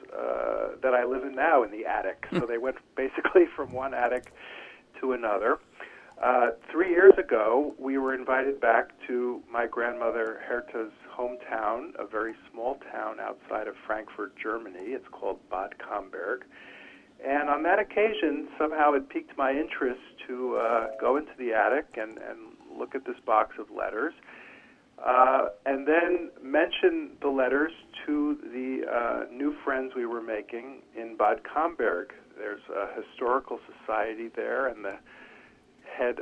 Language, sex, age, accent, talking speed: English, male, 50-69, American, 150 wpm